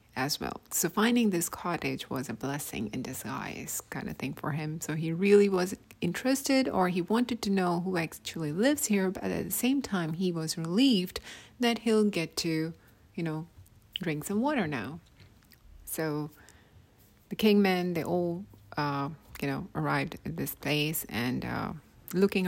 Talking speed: 170 wpm